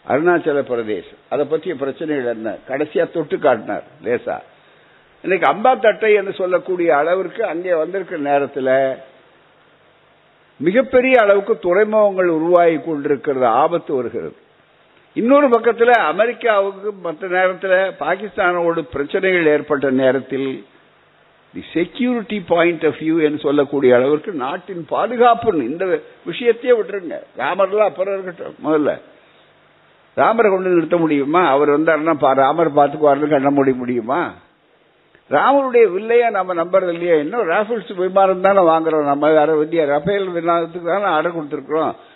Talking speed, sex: 110 wpm, male